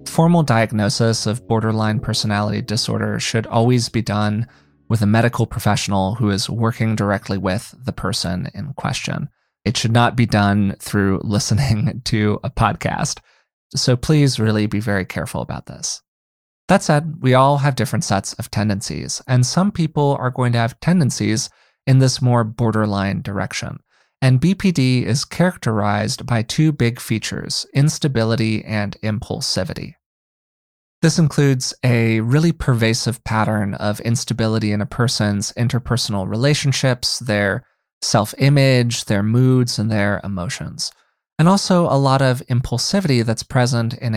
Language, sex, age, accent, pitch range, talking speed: English, male, 20-39, American, 105-130 Hz, 140 wpm